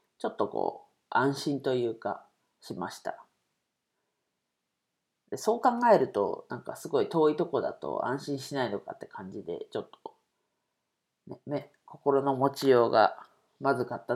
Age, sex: 40-59, female